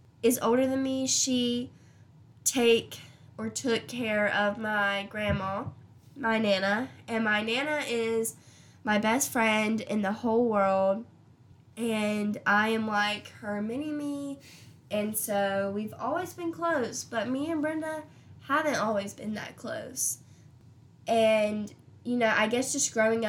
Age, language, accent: 10-29, English, American